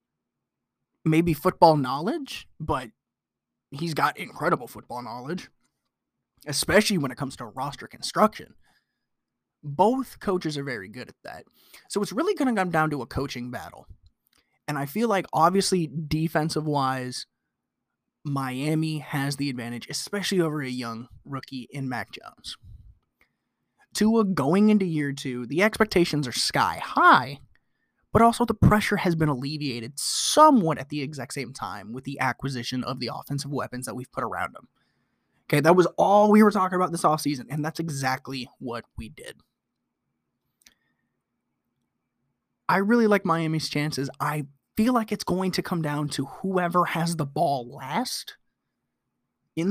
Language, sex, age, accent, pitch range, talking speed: English, male, 20-39, American, 135-185 Hz, 150 wpm